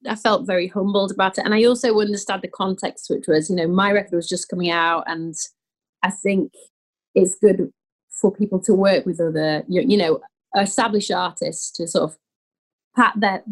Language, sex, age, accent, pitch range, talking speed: English, female, 30-49, British, 160-200 Hz, 185 wpm